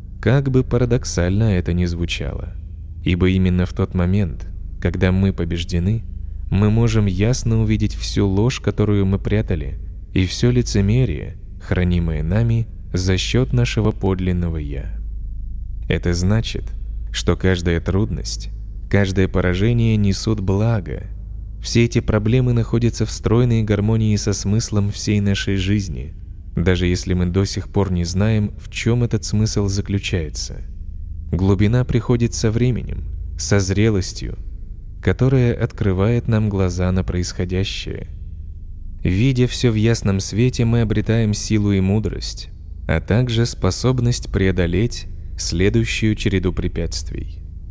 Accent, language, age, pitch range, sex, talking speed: native, Russian, 20-39, 90-110 Hz, male, 120 wpm